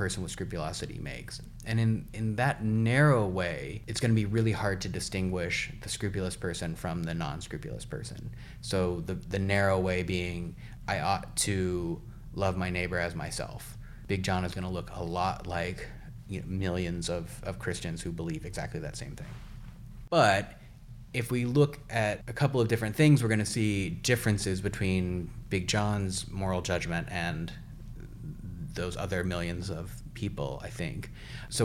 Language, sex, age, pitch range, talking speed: English, male, 30-49, 90-115 Hz, 165 wpm